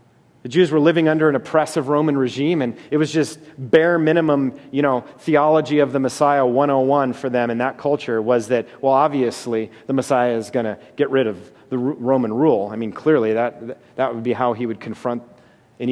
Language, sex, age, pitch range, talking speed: English, male, 30-49, 125-155 Hz, 205 wpm